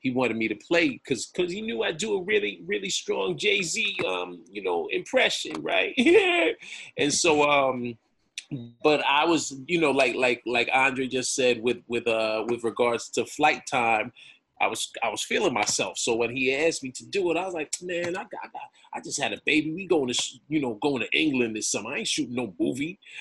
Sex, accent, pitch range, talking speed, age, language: male, American, 115-155 Hz, 230 wpm, 30-49, English